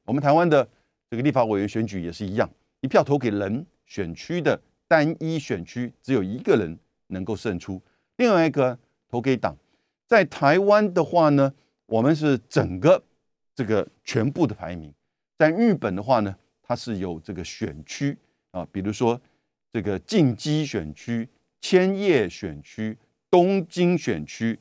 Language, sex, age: Chinese, male, 50-69